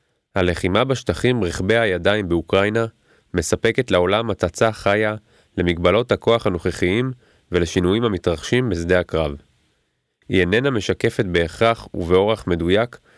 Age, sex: 30-49, male